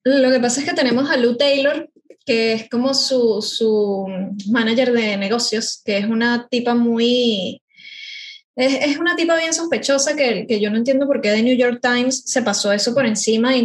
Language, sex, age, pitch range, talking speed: Spanish, female, 10-29, 215-270 Hz, 200 wpm